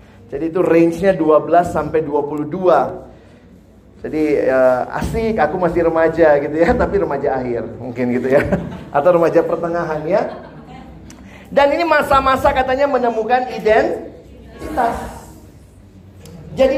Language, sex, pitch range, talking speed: Indonesian, male, 150-245 Hz, 110 wpm